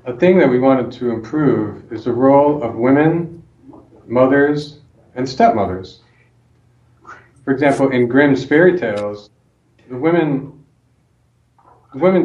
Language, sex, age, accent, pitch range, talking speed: English, male, 40-59, American, 115-145 Hz, 120 wpm